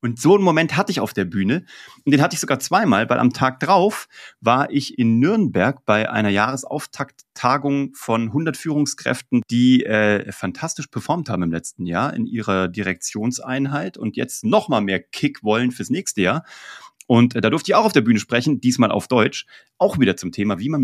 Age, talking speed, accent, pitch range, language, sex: 30-49, 195 wpm, German, 115-145 Hz, German, male